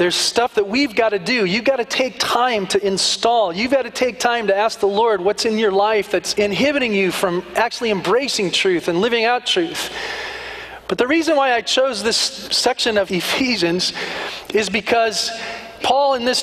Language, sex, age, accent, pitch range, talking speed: English, male, 40-59, American, 210-285 Hz, 195 wpm